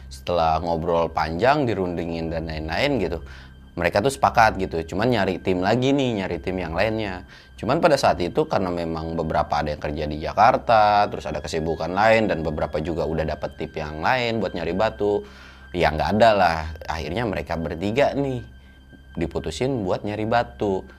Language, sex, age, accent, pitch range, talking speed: Indonesian, male, 20-39, native, 80-115 Hz, 165 wpm